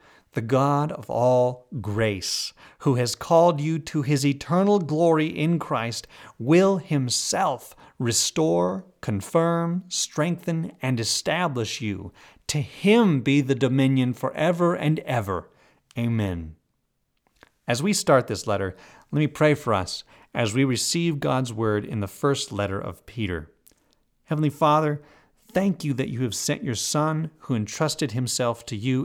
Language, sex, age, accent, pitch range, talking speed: English, male, 40-59, American, 110-155 Hz, 140 wpm